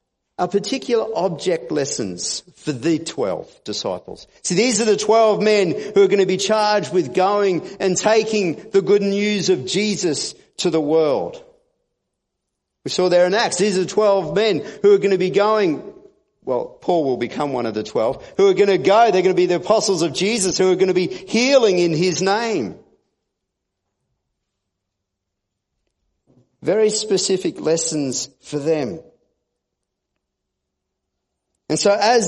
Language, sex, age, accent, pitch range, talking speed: English, male, 50-69, Australian, 160-225 Hz, 160 wpm